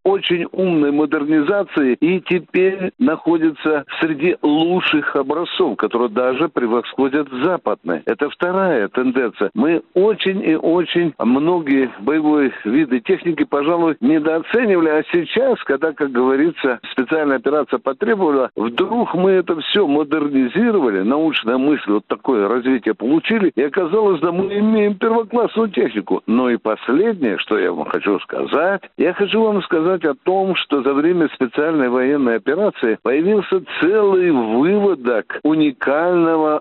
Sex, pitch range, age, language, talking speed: male, 140-190 Hz, 60-79, Russian, 125 wpm